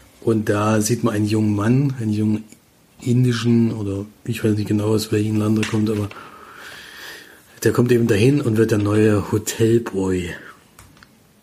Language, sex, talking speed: German, male, 160 wpm